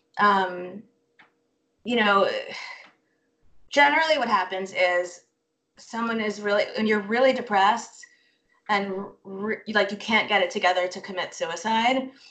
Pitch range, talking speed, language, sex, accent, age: 185-230 Hz, 115 wpm, English, female, American, 20-39